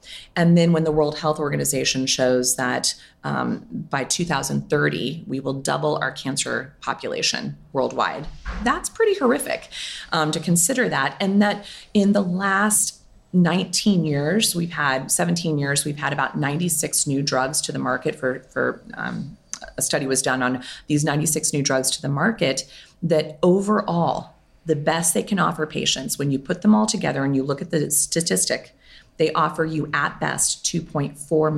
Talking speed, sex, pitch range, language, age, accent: 165 wpm, female, 145-185 Hz, English, 30-49, American